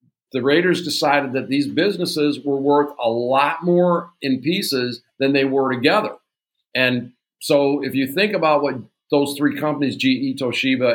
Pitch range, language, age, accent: 125-155 Hz, English, 50-69, American